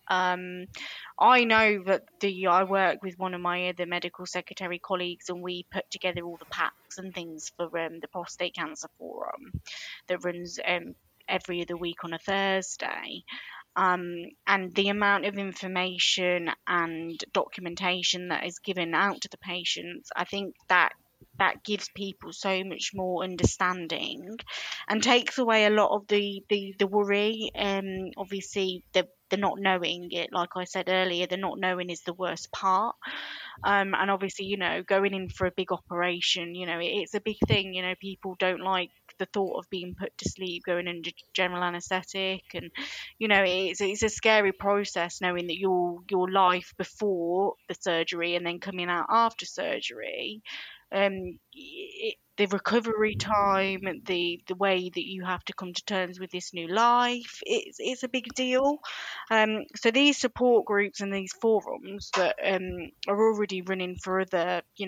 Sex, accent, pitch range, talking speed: female, British, 180-200 Hz, 175 wpm